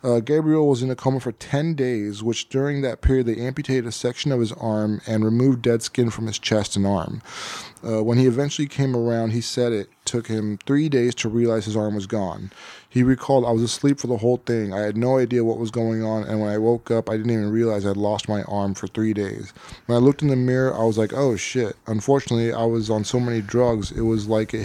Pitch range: 110-130 Hz